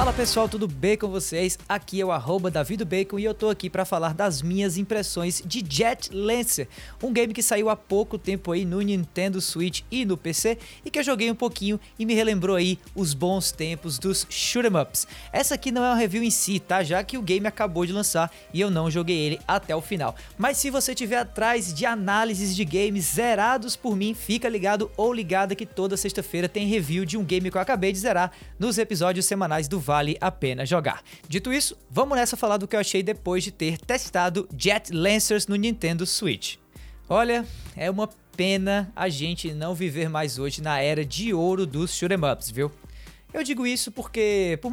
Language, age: Portuguese, 20-39